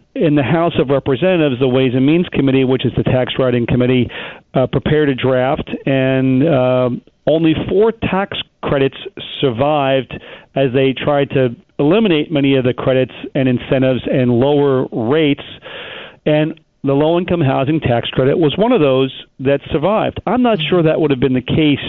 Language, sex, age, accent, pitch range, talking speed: English, male, 40-59, American, 130-155 Hz, 170 wpm